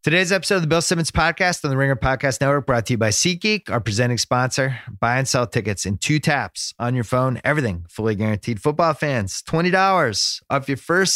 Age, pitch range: 30-49, 95-130 Hz